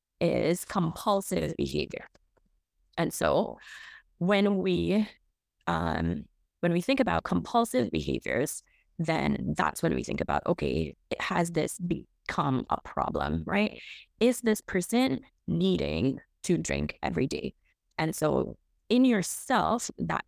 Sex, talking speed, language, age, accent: female, 120 wpm, English, 20-39, American